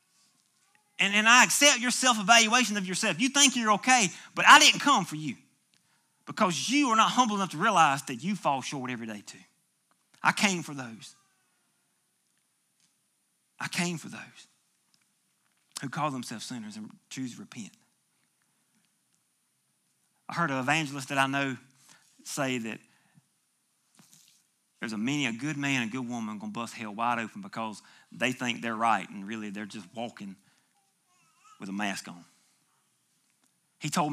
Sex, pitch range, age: male, 130-200 Hz, 40-59